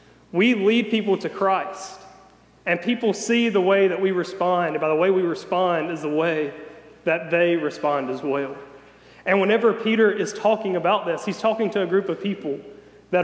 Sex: male